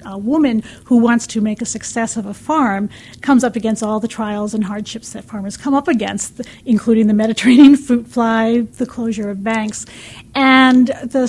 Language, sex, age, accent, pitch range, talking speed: English, female, 40-59, American, 210-240 Hz, 185 wpm